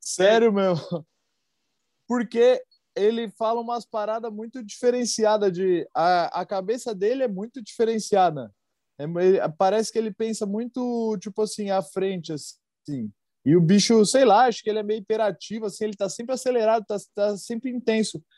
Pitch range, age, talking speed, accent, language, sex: 185-225 Hz, 20-39, 150 wpm, Brazilian, Portuguese, male